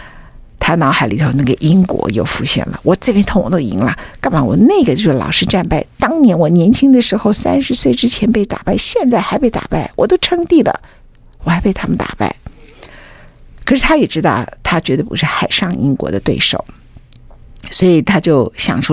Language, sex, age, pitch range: Chinese, female, 50-69, 155-225 Hz